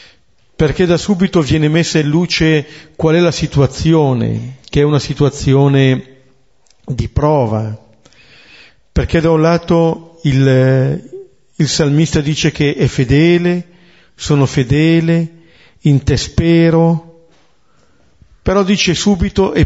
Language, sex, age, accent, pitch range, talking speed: Italian, male, 50-69, native, 135-165 Hz, 115 wpm